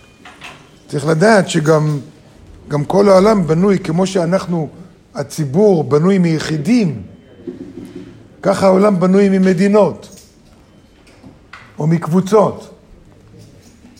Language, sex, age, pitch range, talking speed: Hebrew, male, 50-69, 115-185 Hz, 75 wpm